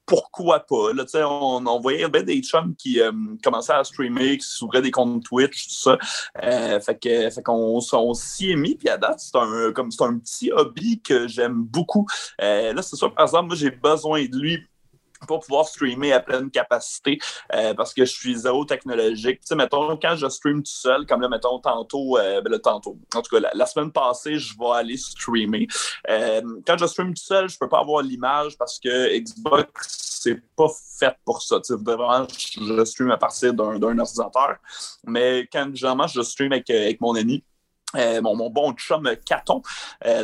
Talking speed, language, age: 215 wpm, French, 30-49